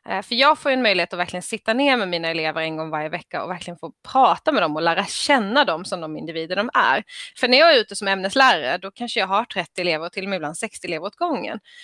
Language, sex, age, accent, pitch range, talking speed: Swedish, female, 20-39, native, 175-250 Hz, 265 wpm